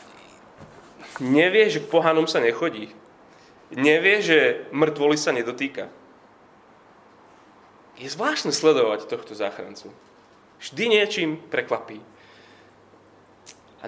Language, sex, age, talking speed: Slovak, male, 30-49, 85 wpm